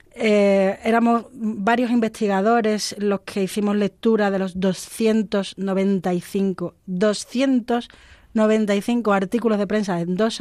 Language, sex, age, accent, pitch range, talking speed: Spanish, female, 30-49, Spanish, 185-230 Hz, 100 wpm